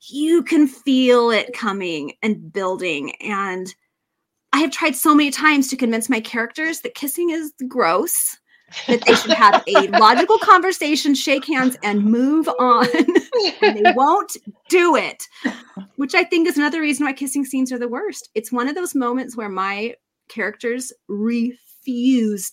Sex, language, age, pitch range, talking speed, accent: female, English, 30-49, 215-315 Hz, 160 wpm, American